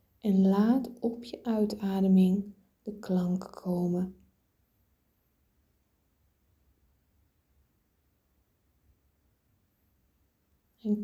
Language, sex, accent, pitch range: Dutch, female, Dutch, 170-200 Hz